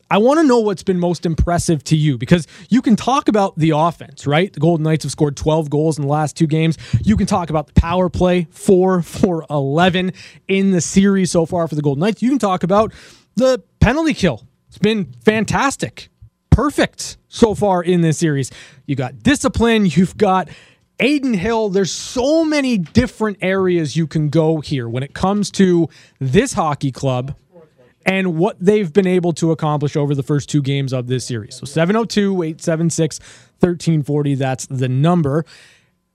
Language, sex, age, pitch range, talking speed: English, male, 20-39, 145-195 Hz, 180 wpm